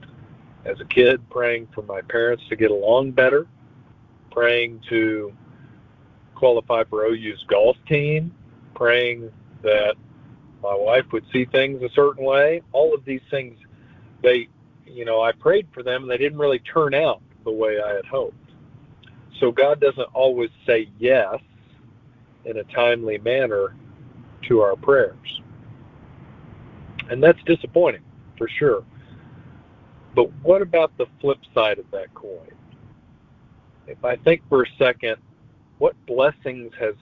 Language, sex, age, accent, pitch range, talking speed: English, male, 40-59, American, 115-145 Hz, 140 wpm